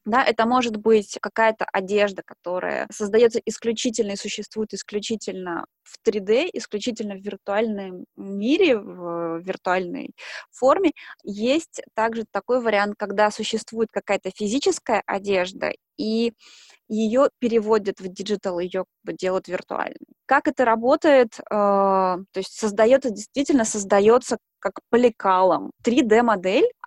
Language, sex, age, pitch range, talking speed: English, female, 20-39, 200-245 Hz, 110 wpm